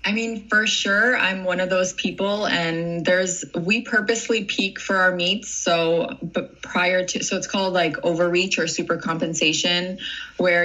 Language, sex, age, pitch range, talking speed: English, female, 20-39, 165-190 Hz, 165 wpm